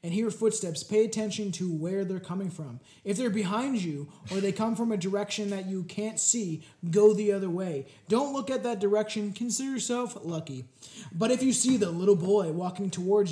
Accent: American